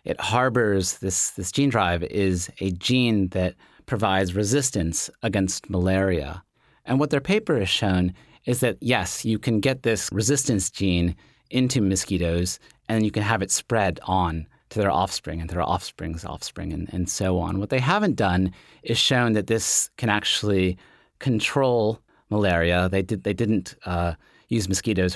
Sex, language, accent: male, English, American